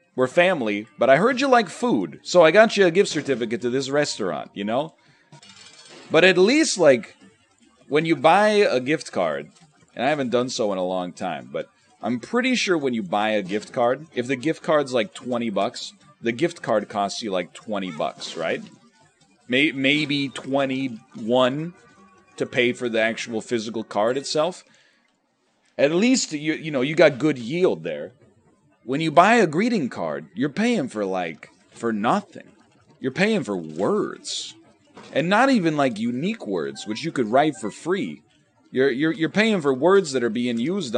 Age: 30-49